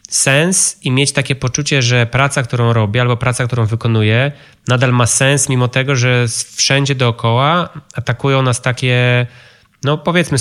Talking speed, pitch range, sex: 150 wpm, 115-135 Hz, male